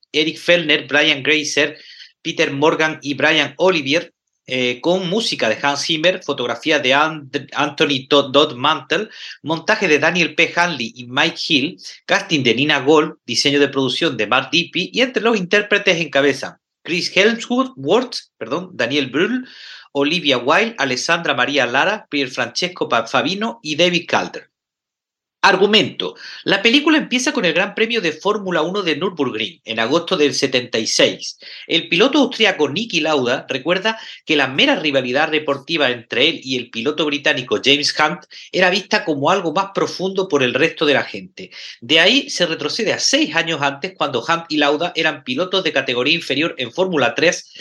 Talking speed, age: 160 wpm, 40-59